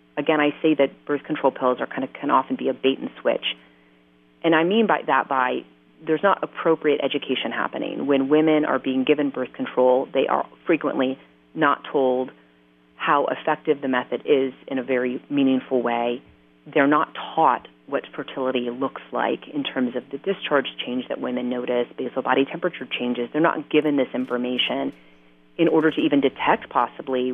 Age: 30-49